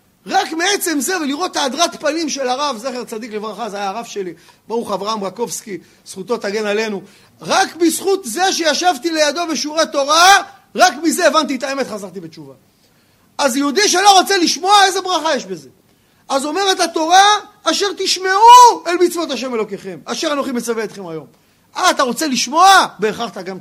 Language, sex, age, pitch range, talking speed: Hebrew, male, 40-59, 230-345 Hz, 165 wpm